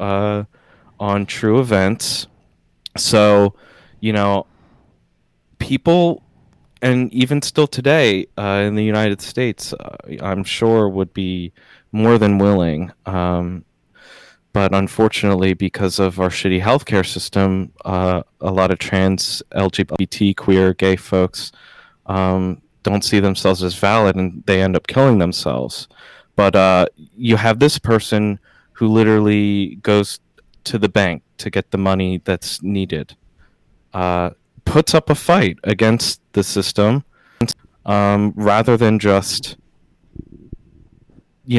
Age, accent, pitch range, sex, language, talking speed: 30-49, American, 95-110 Hz, male, English, 125 wpm